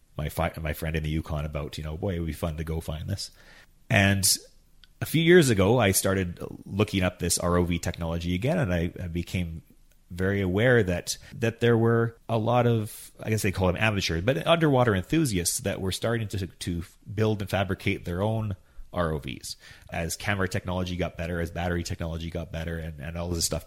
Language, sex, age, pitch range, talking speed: English, male, 30-49, 85-105 Hz, 200 wpm